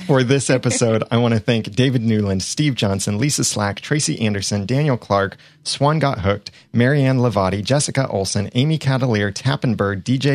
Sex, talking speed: male, 160 wpm